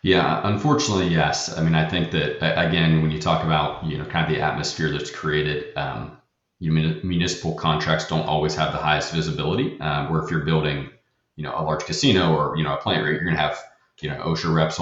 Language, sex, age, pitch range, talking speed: English, male, 30-49, 75-90 Hz, 225 wpm